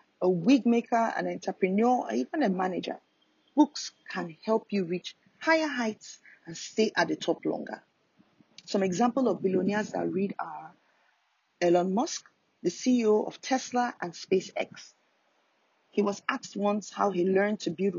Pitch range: 185-245 Hz